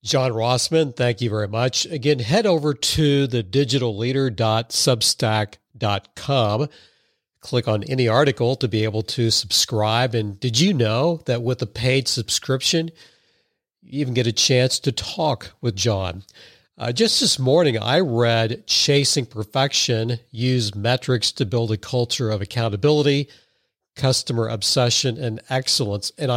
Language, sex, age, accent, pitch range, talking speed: English, male, 50-69, American, 115-135 Hz, 135 wpm